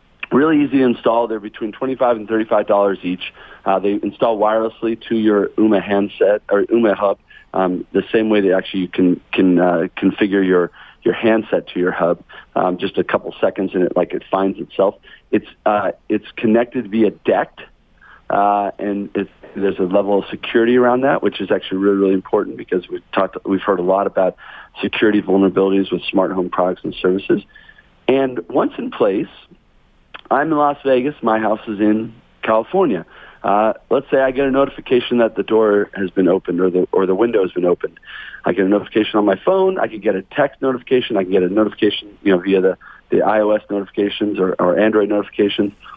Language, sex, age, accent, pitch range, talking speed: English, male, 40-59, American, 95-120 Hz, 195 wpm